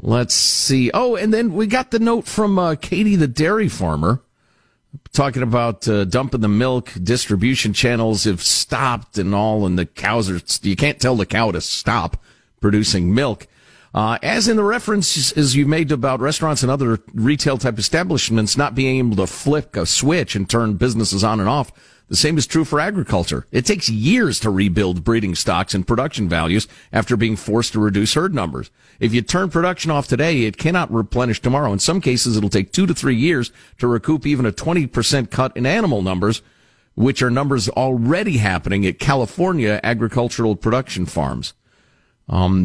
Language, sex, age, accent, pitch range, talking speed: English, male, 50-69, American, 105-145 Hz, 185 wpm